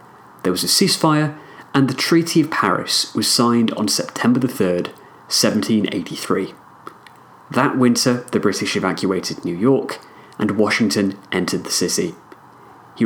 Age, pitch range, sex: 30-49, 110-145 Hz, male